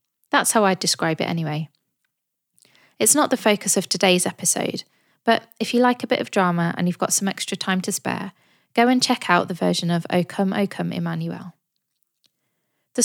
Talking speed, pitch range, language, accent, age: 195 wpm, 175-225 Hz, English, British, 20-39